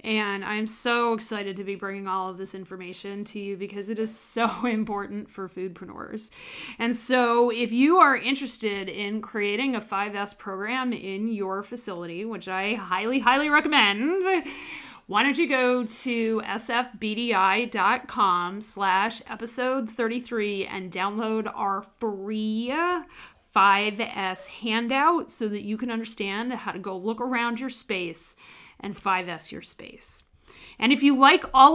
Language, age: English, 30-49